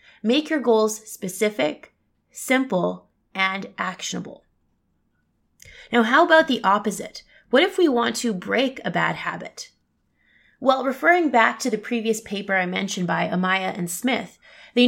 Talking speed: 140 wpm